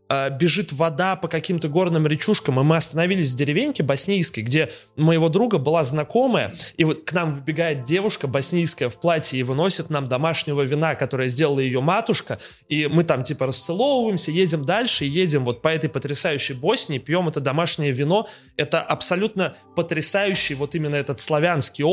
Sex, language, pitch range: male, Russian, 145-180 Hz